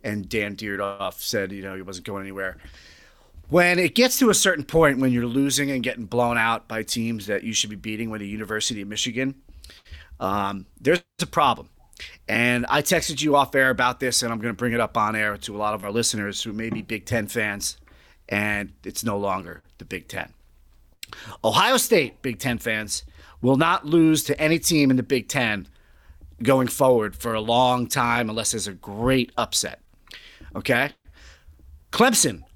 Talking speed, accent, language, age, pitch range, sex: 190 wpm, American, English, 30-49, 100-140 Hz, male